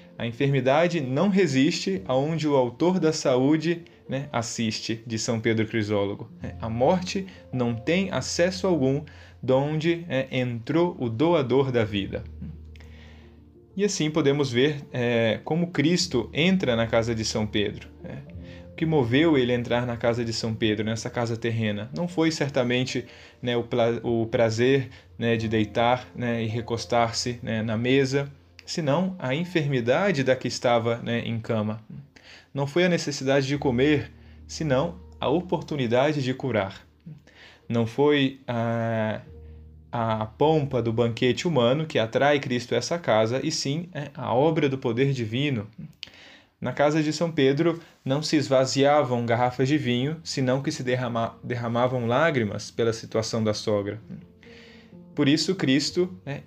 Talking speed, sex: 140 wpm, male